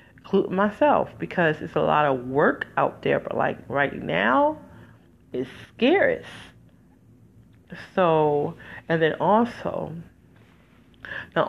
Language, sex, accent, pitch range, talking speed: English, female, American, 155-215 Hz, 105 wpm